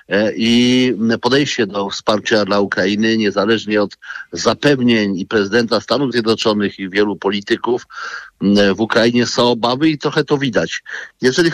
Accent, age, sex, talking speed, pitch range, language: native, 50-69, male, 130 wpm, 115-135 Hz, Polish